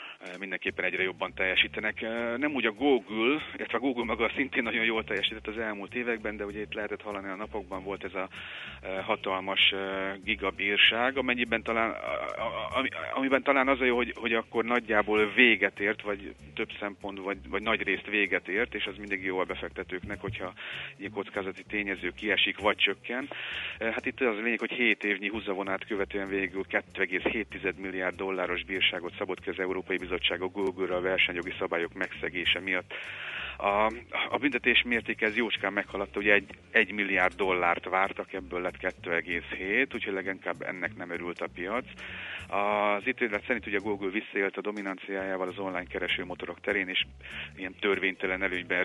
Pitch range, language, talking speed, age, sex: 95-110 Hz, Hungarian, 160 wpm, 40-59, male